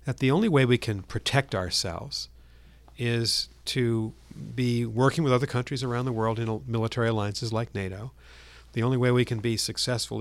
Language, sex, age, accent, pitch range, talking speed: English, male, 50-69, American, 95-125 Hz, 175 wpm